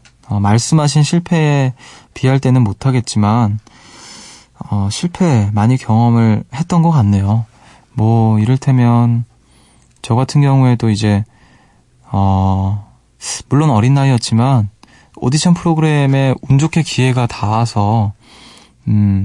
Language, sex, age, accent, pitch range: Korean, male, 20-39, native, 105-130 Hz